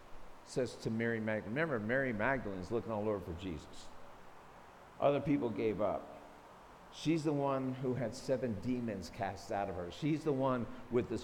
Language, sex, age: English, male, 50-69